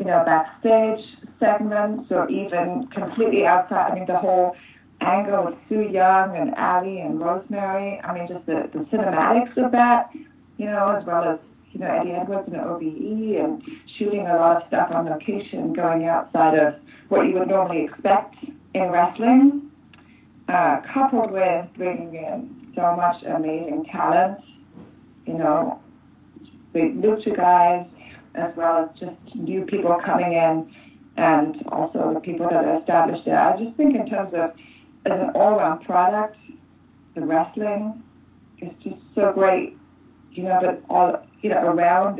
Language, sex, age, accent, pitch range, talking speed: English, female, 20-39, American, 170-235 Hz, 155 wpm